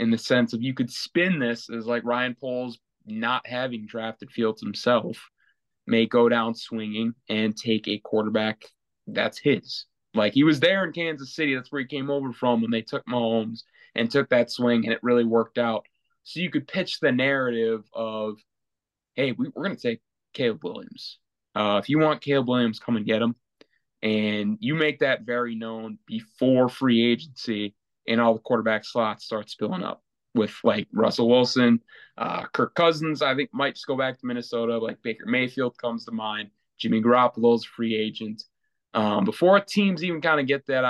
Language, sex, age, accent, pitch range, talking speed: English, male, 20-39, American, 115-140 Hz, 185 wpm